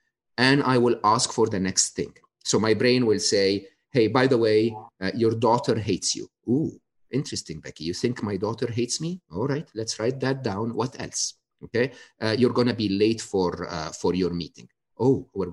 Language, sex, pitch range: English, male, 105-135 Hz